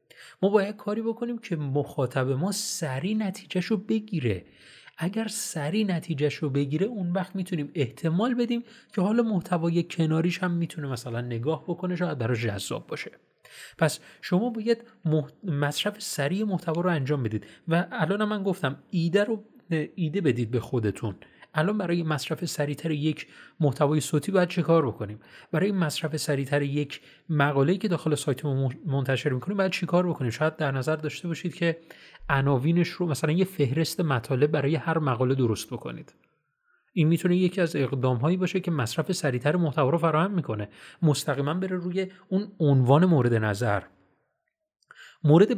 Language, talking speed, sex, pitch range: Persian, 150 wpm, male, 140-185 Hz